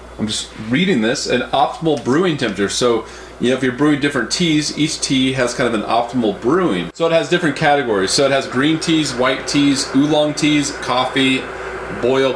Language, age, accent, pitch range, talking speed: English, 30-49, American, 110-135 Hz, 195 wpm